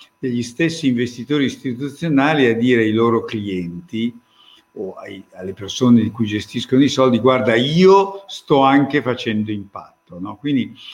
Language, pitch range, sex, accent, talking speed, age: Italian, 110-145 Hz, male, native, 130 wpm, 50-69